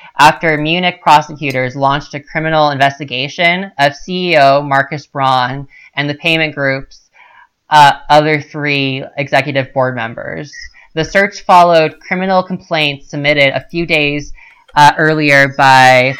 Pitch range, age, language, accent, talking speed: 140-165 Hz, 20-39, English, American, 120 wpm